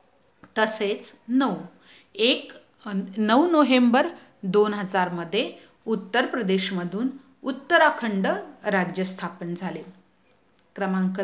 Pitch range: 190-270 Hz